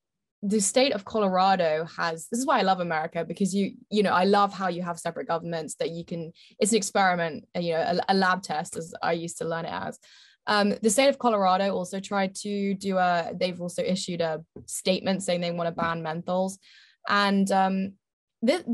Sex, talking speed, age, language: female, 210 wpm, 20-39, English